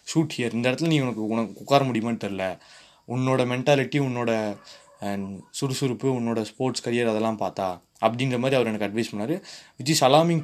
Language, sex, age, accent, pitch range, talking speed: Tamil, male, 20-39, native, 115-150 Hz, 160 wpm